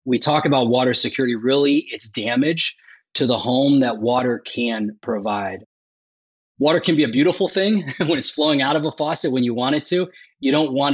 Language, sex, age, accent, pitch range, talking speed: English, male, 30-49, American, 115-150 Hz, 195 wpm